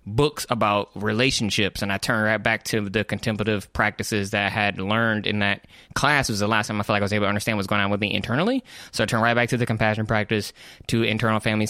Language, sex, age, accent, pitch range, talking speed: English, male, 20-39, American, 100-115 Hz, 255 wpm